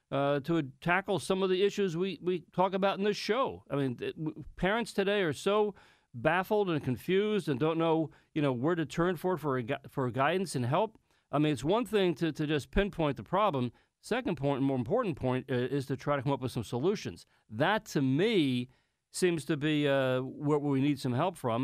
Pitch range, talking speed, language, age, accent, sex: 135-170 Hz, 210 wpm, English, 40-59, American, male